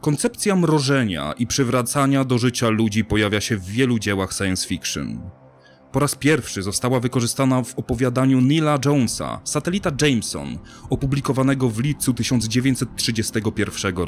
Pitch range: 105-145 Hz